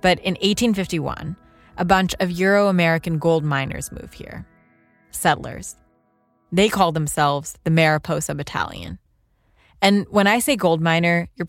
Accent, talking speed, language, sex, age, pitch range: American, 130 wpm, English, female, 20-39, 150-190 Hz